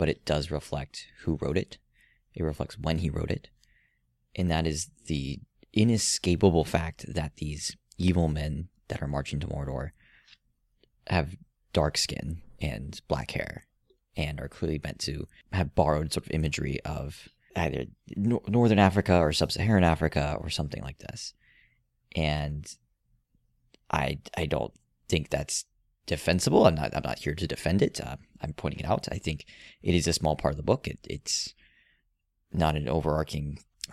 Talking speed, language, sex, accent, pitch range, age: 160 wpm, English, male, American, 75-90 Hz, 30-49